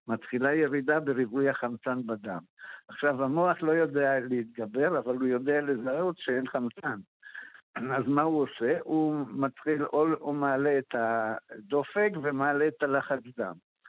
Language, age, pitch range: Hebrew, 60-79, 130-155 Hz